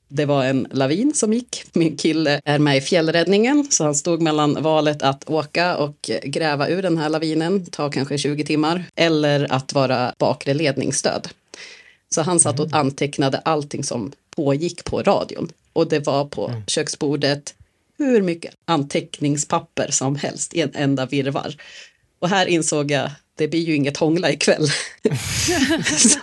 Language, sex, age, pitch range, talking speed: Swedish, female, 30-49, 140-170 Hz, 160 wpm